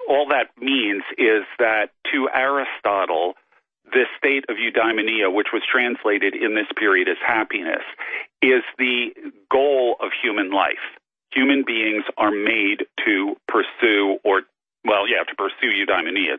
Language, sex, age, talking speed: English, male, 40-59, 135 wpm